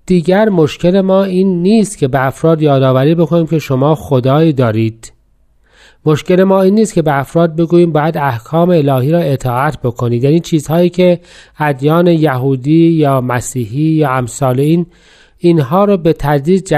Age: 40-59